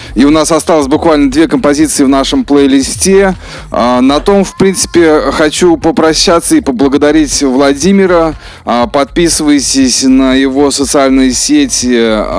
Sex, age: male, 20-39